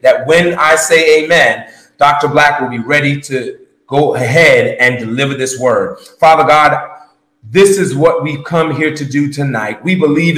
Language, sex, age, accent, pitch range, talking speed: English, male, 30-49, American, 145-170 Hz, 175 wpm